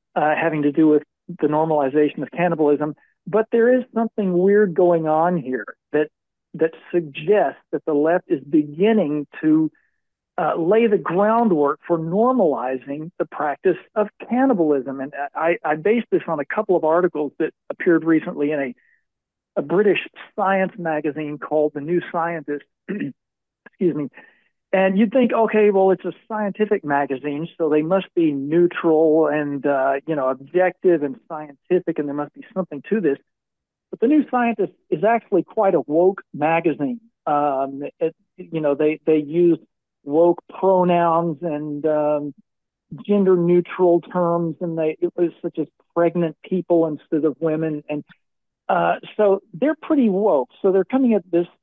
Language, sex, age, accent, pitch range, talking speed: English, male, 50-69, American, 150-195 Hz, 155 wpm